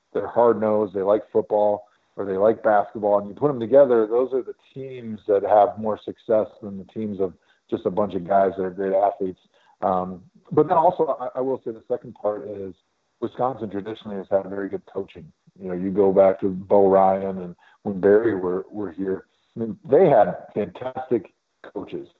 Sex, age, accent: male, 40-59, American